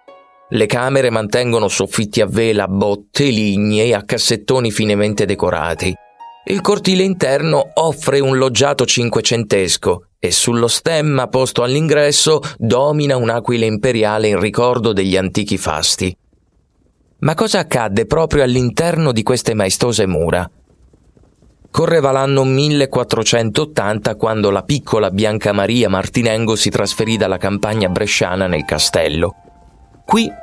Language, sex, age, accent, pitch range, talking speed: Italian, male, 30-49, native, 105-150 Hz, 115 wpm